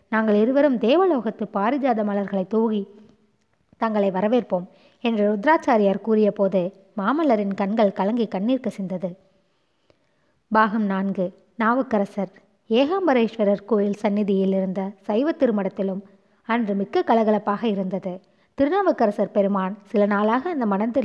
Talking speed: 105 wpm